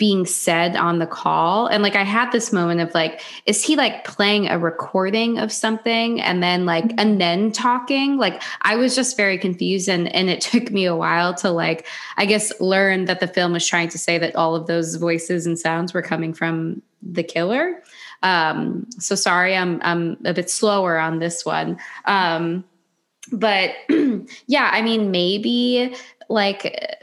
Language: English